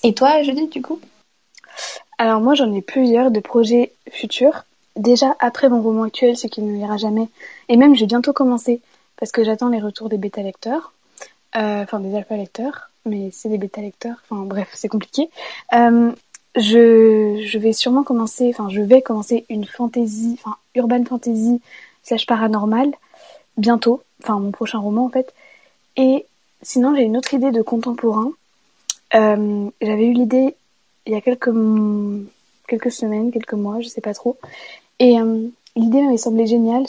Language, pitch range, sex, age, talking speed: French, 215-250 Hz, female, 20-39, 165 wpm